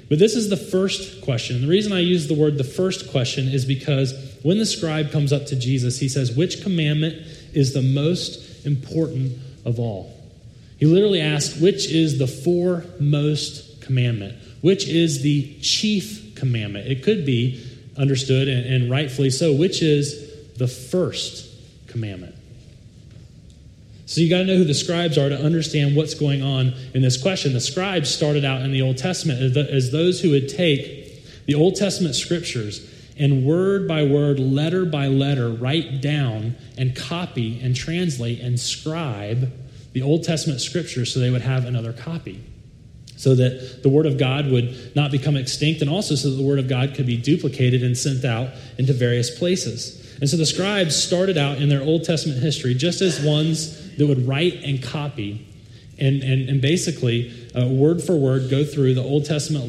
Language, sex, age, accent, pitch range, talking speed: English, male, 30-49, American, 125-155 Hz, 180 wpm